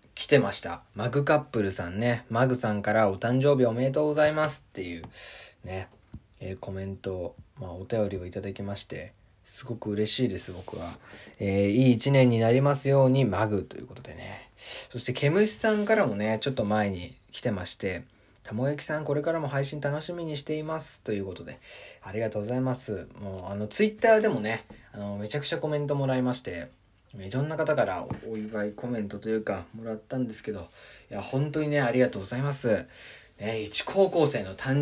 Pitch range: 100-135 Hz